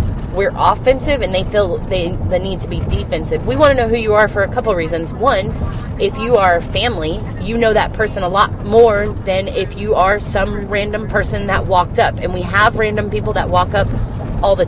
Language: English